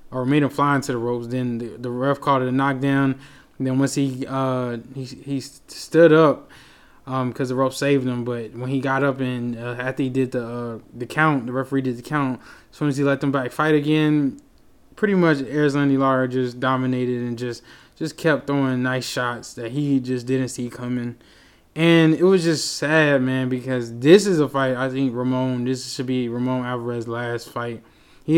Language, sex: English, male